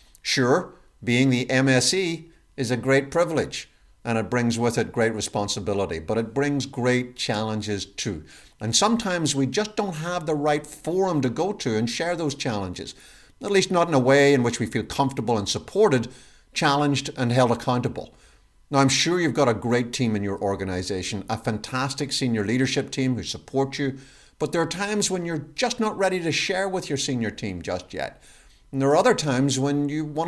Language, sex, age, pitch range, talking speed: English, male, 50-69, 110-150 Hz, 190 wpm